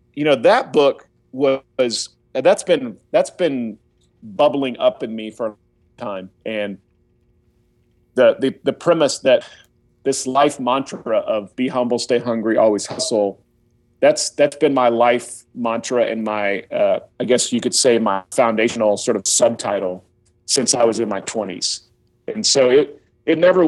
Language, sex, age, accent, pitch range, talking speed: English, male, 40-59, American, 110-135 Hz, 160 wpm